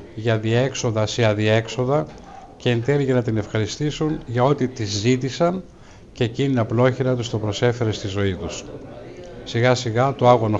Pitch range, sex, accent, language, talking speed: 110-130 Hz, male, native, Greek, 160 wpm